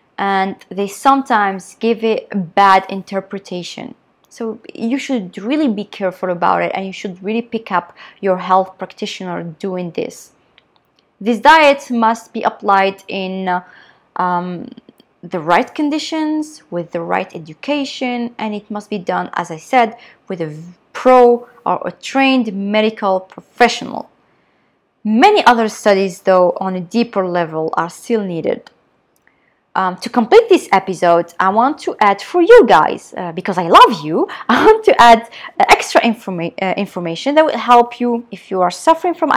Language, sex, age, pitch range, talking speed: Arabic, female, 20-39, 185-250 Hz, 155 wpm